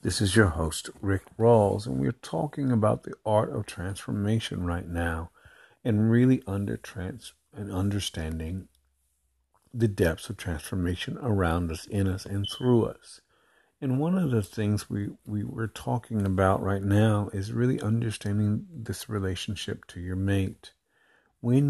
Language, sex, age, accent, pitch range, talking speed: English, male, 50-69, American, 90-105 Hz, 145 wpm